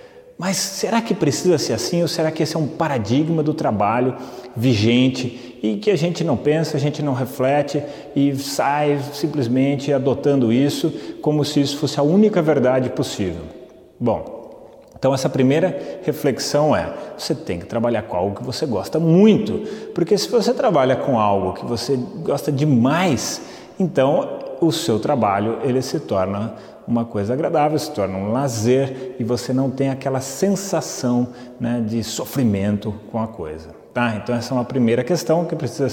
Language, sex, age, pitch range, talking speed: Portuguese, male, 30-49, 120-150 Hz, 165 wpm